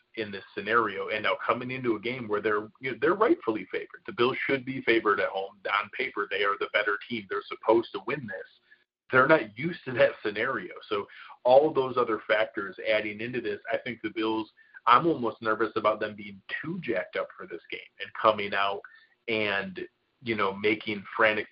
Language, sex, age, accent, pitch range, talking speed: English, male, 30-49, American, 105-135 Hz, 205 wpm